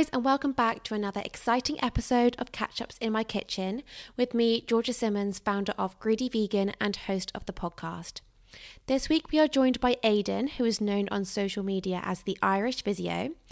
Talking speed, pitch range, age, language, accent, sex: 185 wpm, 190-230 Hz, 20-39, English, British, female